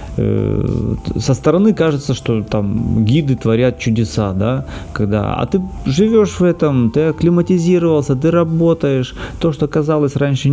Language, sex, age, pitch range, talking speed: Russian, male, 30-49, 110-145 Hz, 130 wpm